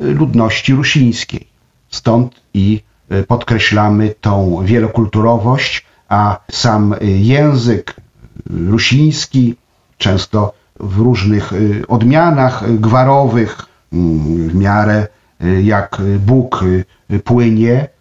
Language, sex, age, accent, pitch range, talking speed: Polish, male, 50-69, native, 105-125 Hz, 70 wpm